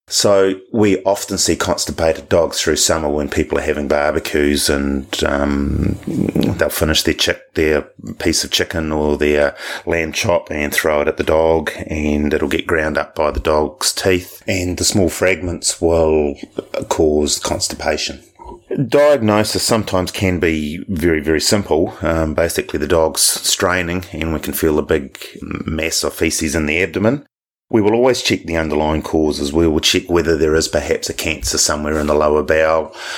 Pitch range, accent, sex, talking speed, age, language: 75-90 Hz, Australian, male, 170 wpm, 30-49, English